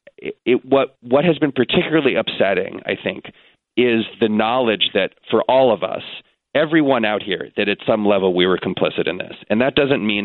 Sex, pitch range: male, 100-130 Hz